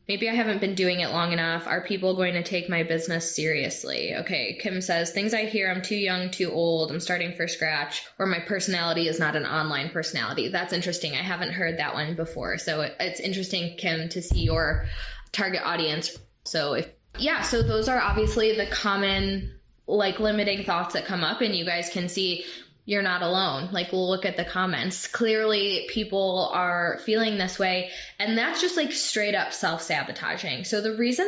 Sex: female